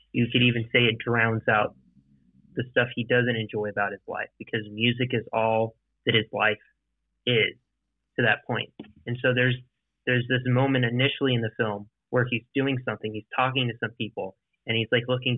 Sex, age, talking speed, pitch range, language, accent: male, 20-39, 190 wpm, 110-125 Hz, English, American